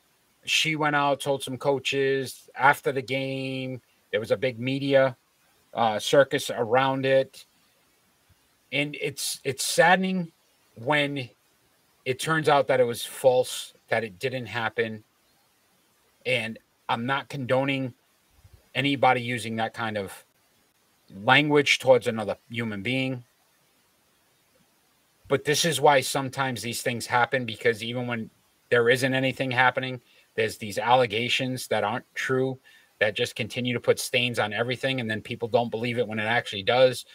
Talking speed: 140 wpm